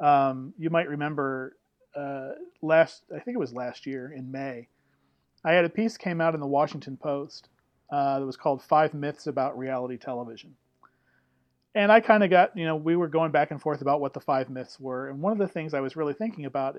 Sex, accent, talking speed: male, American, 220 wpm